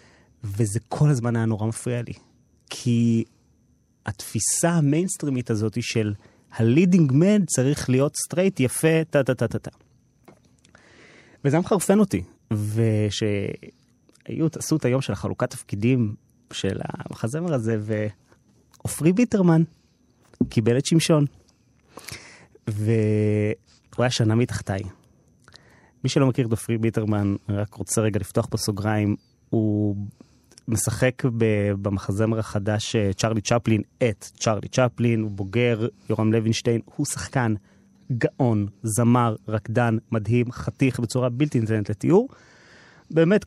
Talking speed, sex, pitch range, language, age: 105 wpm, male, 110-135 Hz, Hebrew, 30-49